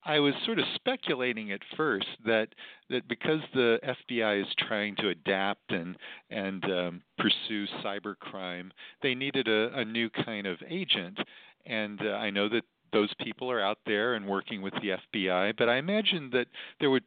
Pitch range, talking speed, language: 95-120 Hz, 175 wpm, English